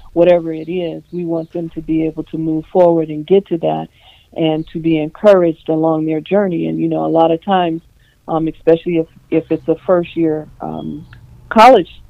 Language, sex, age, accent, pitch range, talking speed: English, female, 50-69, American, 155-175 Hz, 190 wpm